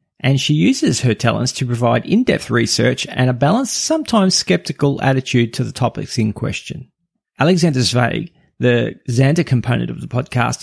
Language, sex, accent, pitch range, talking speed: English, male, Australian, 120-160 Hz, 160 wpm